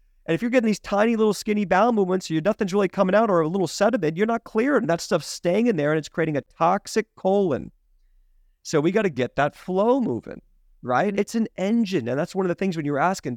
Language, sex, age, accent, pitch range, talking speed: English, male, 30-49, American, 130-195 Hz, 250 wpm